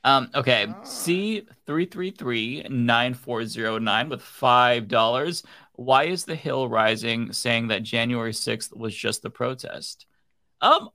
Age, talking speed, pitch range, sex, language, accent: 20-39, 150 wpm, 115-135 Hz, male, English, American